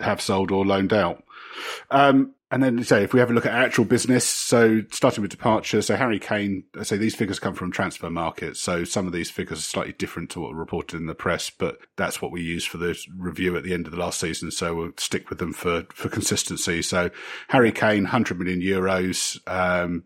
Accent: British